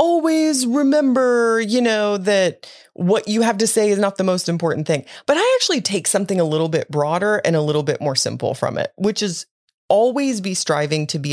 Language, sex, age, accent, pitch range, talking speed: English, female, 30-49, American, 140-200 Hz, 210 wpm